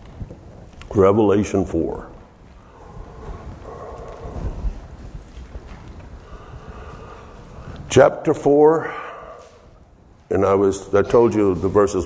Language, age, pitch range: English, 60-79, 95-120 Hz